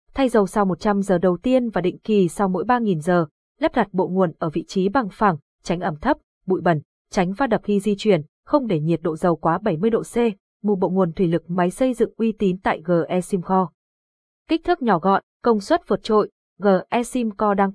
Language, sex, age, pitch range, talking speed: Vietnamese, female, 20-39, 180-225 Hz, 230 wpm